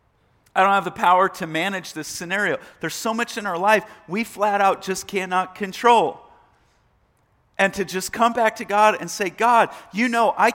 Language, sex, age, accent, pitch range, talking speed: English, male, 40-59, American, 180-230 Hz, 195 wpm